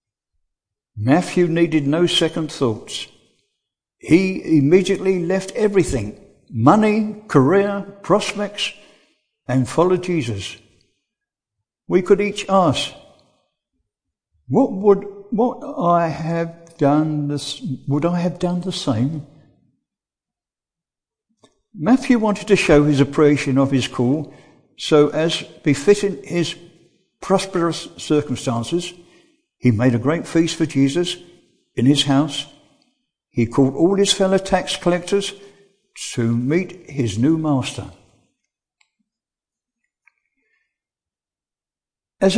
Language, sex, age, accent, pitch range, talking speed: English, male, 60-79, British, 145-195 Hz, 100 wpm